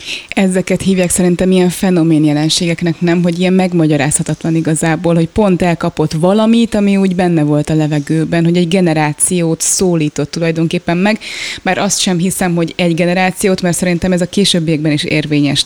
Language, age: Hungarian, 20-39